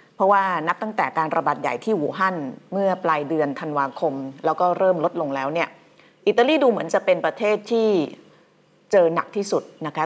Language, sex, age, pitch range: Thai, female, 30-49, 155-190 Hz